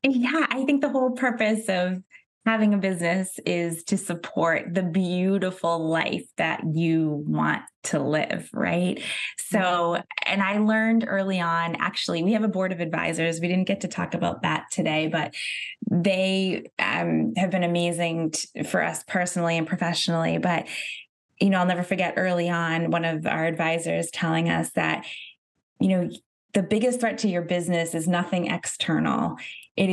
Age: 20-39